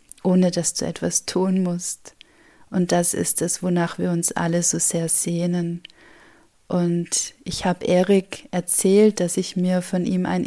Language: German